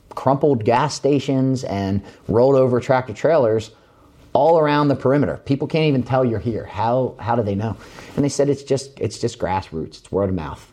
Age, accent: 30-49, American